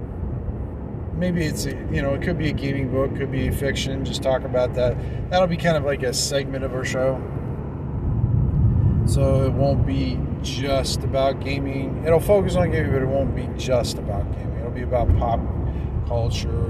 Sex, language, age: male, English, 40-59